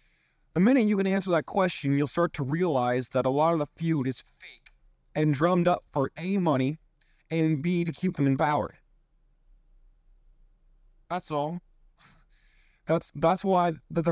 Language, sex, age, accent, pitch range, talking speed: English, male, 30-49, American, 135-175 Hz, 155 wpm